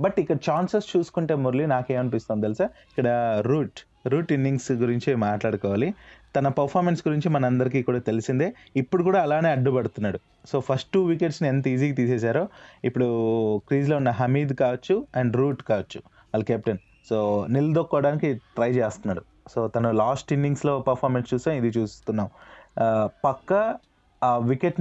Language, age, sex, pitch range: Telugu, 20-39, male, 115-150 Hz